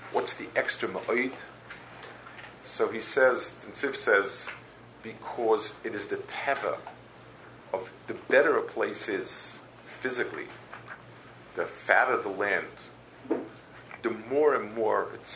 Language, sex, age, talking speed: English, male, 50-69, 115 wpm